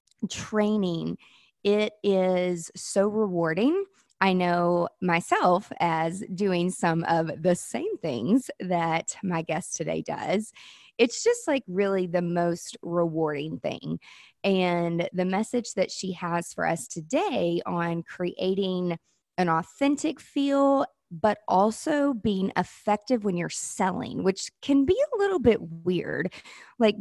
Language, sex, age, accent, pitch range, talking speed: English, female, 20-39, American, 175-235 Hz, 125 wpm